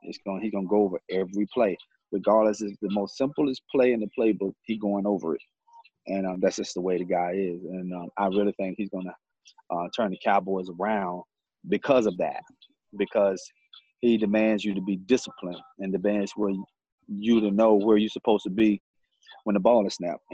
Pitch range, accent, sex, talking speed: 100-125 Hz, American, male, 210 wpm